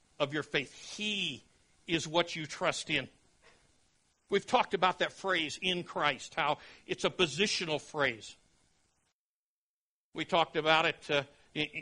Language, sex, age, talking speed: English, male, 60-79, 135 wpm